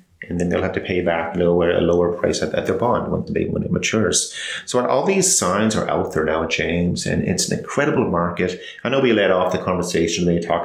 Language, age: English, 30-49